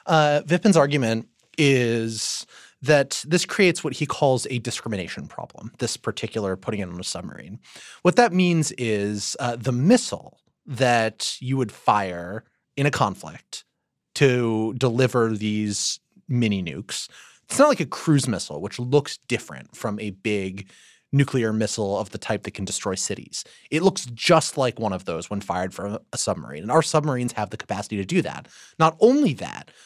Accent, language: American, English